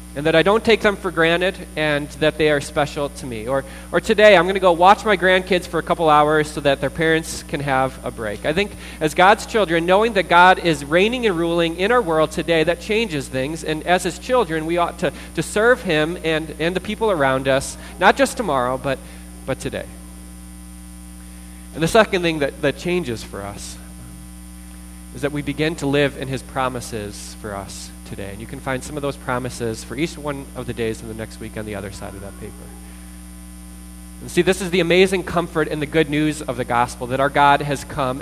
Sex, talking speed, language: male, 225 wpm, English